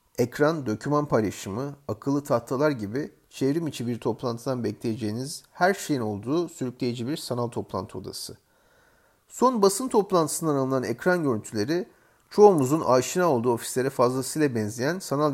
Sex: male